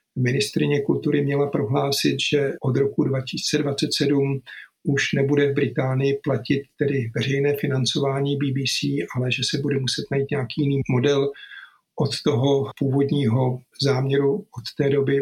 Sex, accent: male, native